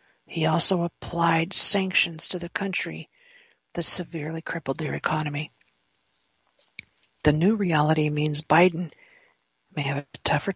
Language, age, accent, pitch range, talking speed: English, 50-69, American, 150-180 Hz, 120 wpm